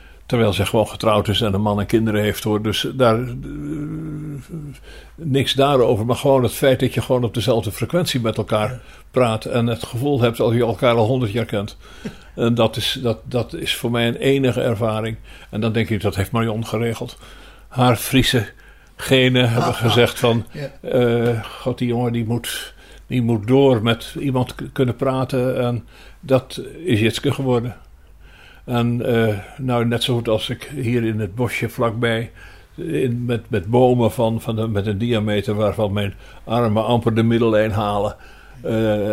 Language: Dutch